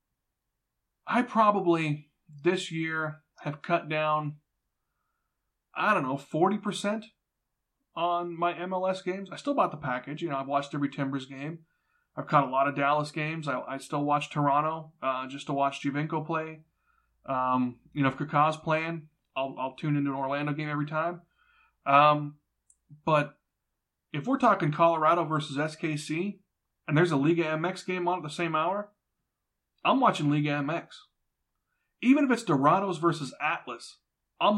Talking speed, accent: 155 wpm, American